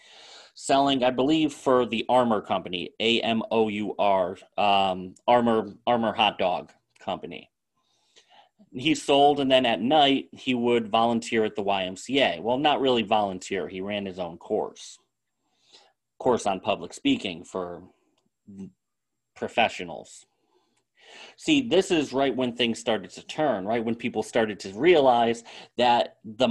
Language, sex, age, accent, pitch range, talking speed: English, male, 30-49, American, 110-135 Hz, 140 wpm